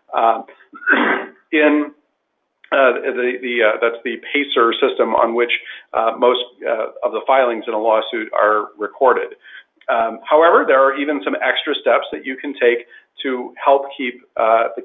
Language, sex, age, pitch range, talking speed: English, male, 40-59, 115-145 Hz, 160 wpm